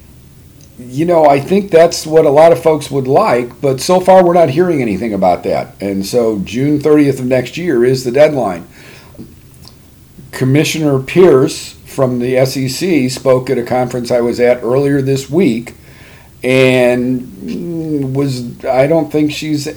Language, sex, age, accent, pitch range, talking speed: English, male, 50-69, American, 110-150 Hz, 160 wpm